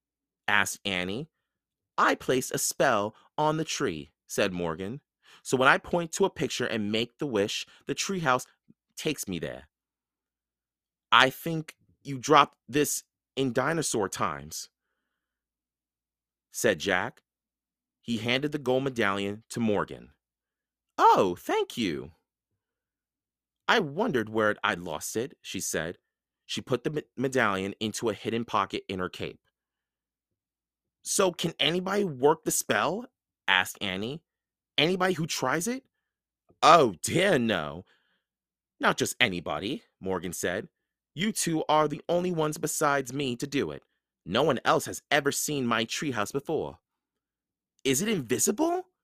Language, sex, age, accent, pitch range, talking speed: English, male, 30-49, American, 100-155 Hz, 135 wpm